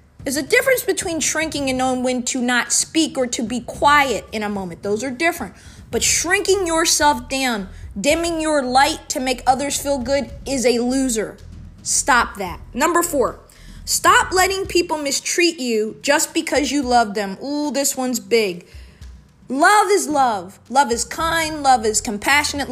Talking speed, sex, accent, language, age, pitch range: 165 wpm, female, American, English, 20-39, 245-295 Hz